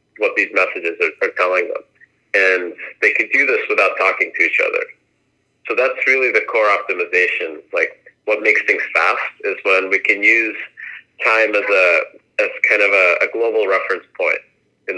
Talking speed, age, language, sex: 180 wpm, 30-49, English, male